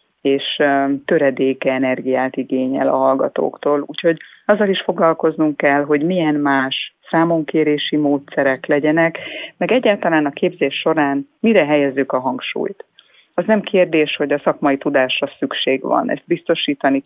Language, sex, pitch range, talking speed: Hungarian, female, 135-175 Hz, 130 wpm